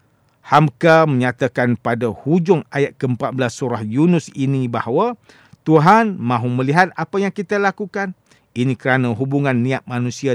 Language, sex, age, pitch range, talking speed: English, male, 50-69, 120-160 Hz, 130 wpm